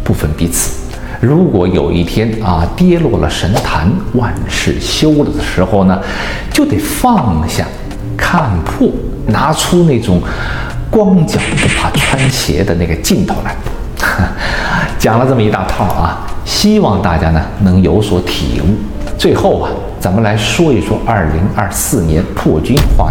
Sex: male